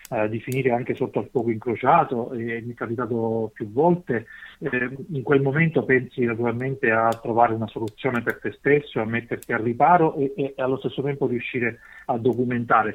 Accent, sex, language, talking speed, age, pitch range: native, male, Italian, 170 wpm, 40-59, 120-140 Hz